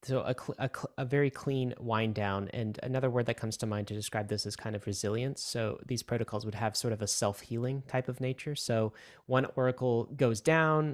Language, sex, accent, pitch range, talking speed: English, male, American, 110-135 Hz, 225 wpm